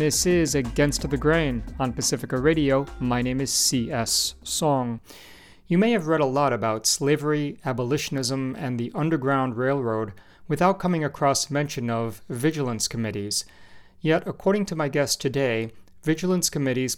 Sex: male